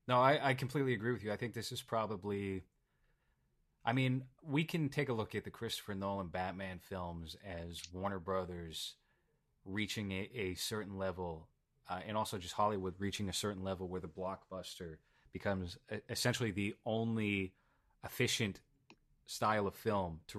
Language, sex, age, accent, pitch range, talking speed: English, male, 30-49, American, 95-115 Hz, 160 wpm